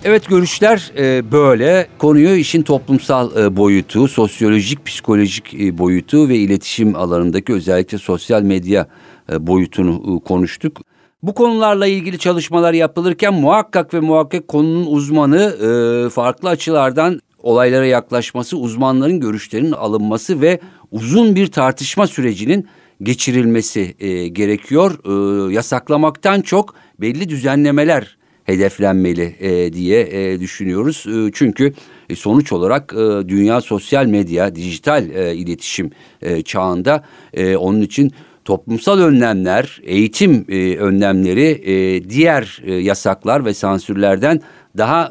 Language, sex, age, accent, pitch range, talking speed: Turkish, male, 50-69, native, 95-150 Hz, 90 wpm